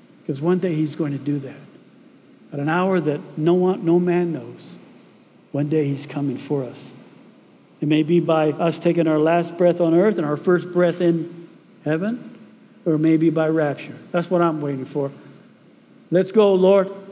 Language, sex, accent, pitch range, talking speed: English, male, American, 170-220 Hz, 180 wpm